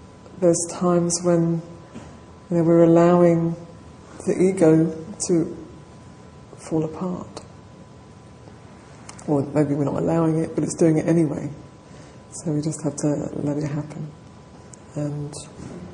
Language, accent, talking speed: English, British, 115 wpm